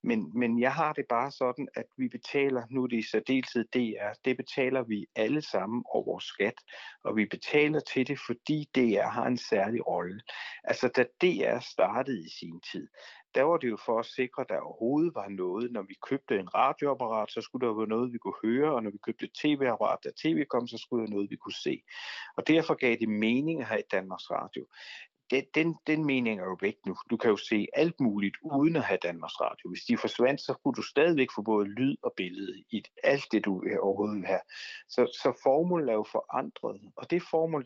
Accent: native